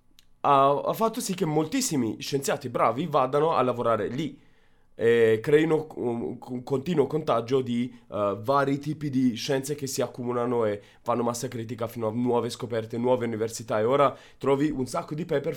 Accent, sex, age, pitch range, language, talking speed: native, male, 20-39, 115-150 Hz, Italian, 165 wpm